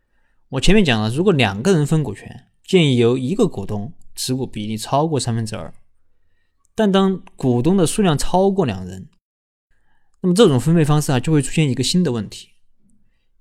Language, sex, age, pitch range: Chinese, male, 20-39, 115-175 Hz